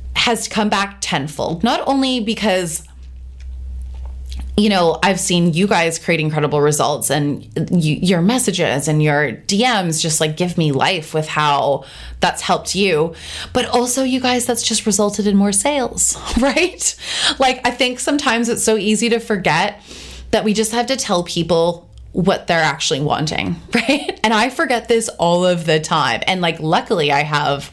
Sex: female